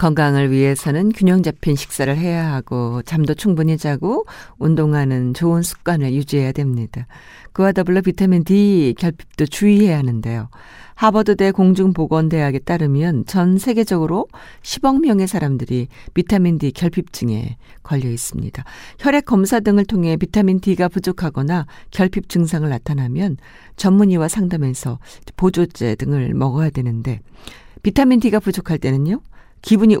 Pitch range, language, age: 140-195 Hz, Korean, 50-69